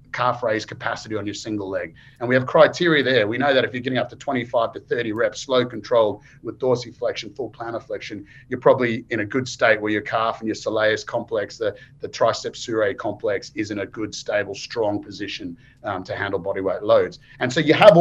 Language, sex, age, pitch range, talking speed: English, male, 30-49, 110-140 Hz, 215 wpm